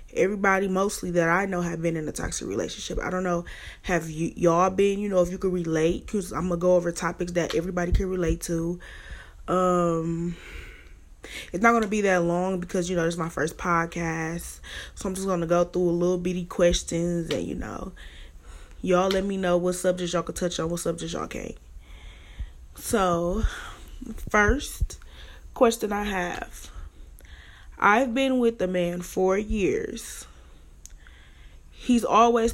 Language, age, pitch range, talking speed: English, 20-39, 160-195 Hz, 175 wpm